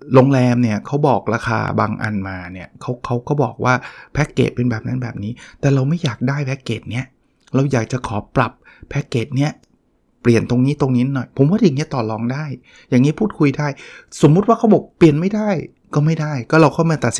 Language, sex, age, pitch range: Thai, male, 20-39, 115-150 Hz